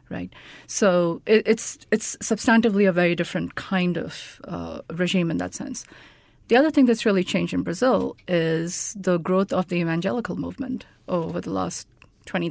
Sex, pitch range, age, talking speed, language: female, 170-210 Hz, 30-49, 165 wpm, English